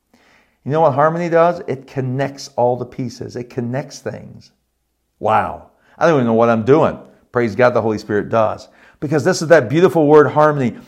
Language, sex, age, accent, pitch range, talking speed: English, male, 50-69, American, 120-175 Hz, 190 wpm